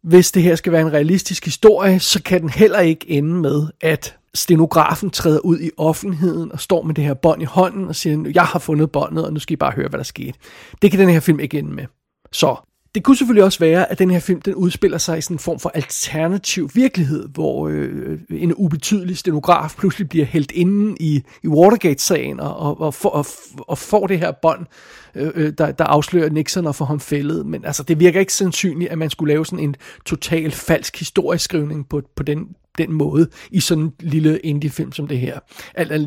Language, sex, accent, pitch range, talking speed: Danish, male, native, 150-175 Hz, 215 wpm